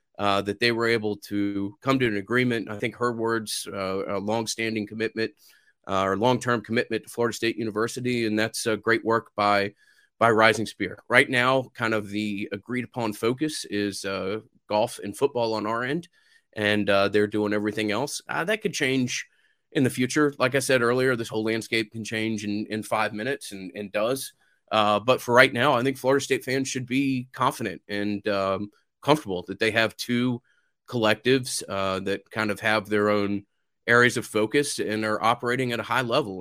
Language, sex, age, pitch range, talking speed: English, male, 30-49, 105-125 Hz, 195 wpm